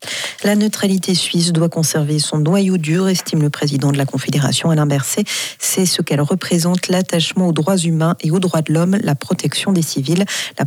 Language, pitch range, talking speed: French, 155-185 Hz, 190 wpm